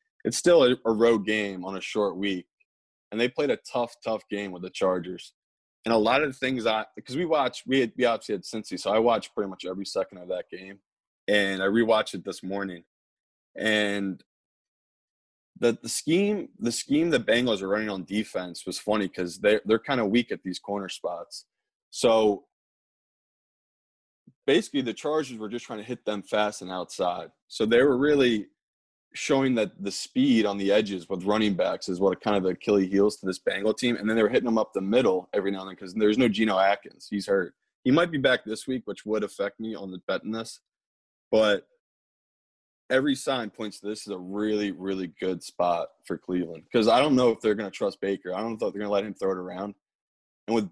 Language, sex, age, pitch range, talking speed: English, male, 20-39, 95-120 Hz, 220 wpm